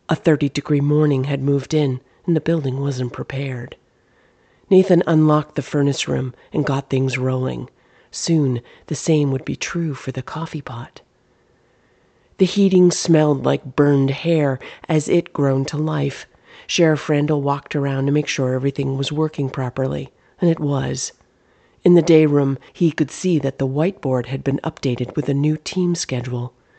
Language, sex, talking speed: English, female, 165 wpm